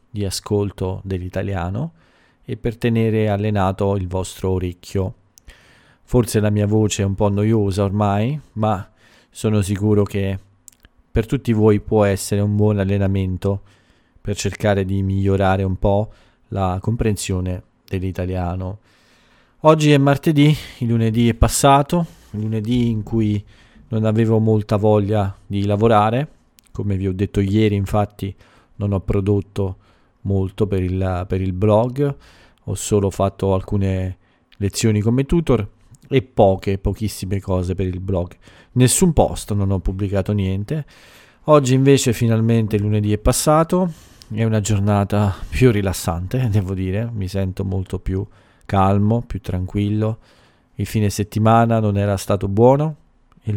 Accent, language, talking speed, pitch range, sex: native, Italian, 135 wpm, 95-115 Hz, male